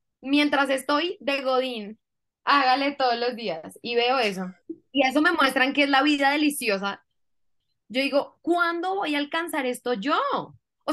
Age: 10-29